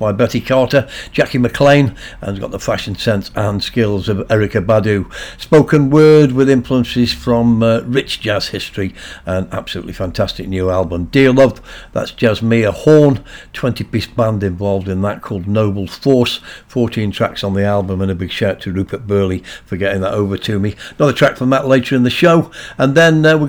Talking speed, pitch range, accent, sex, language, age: 190 wpm, 100-125 Hz, British, male, English, 60-79